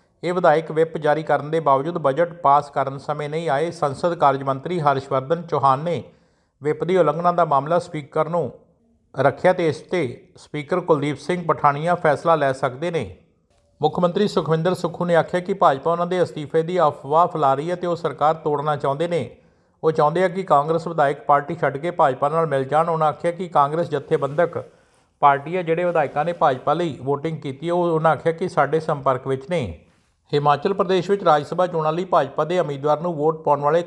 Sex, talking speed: male, 165 wpm